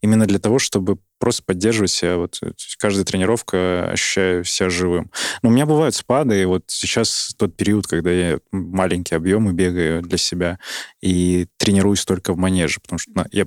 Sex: male